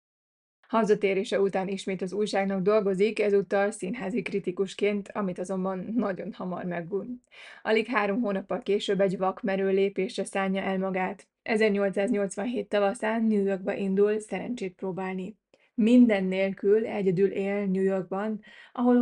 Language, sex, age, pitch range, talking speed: Hungarian, female, 20-39, 190-215 Hz, 120 wpm